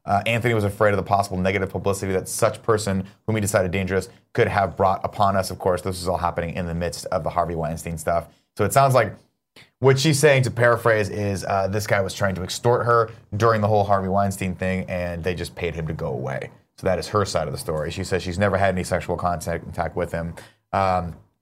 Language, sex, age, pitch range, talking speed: English, male, 30-49, 90-110 Hz, 240 wpm